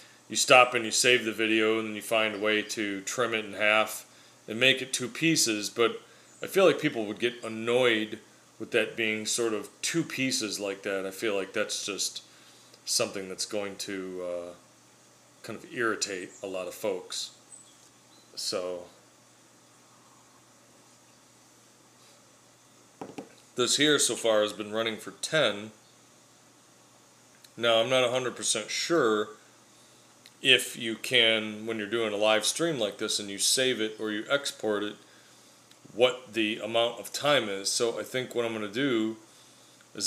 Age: 30-49